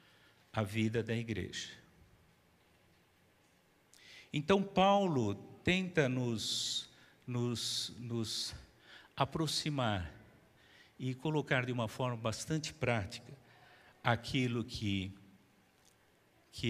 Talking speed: 70 wpm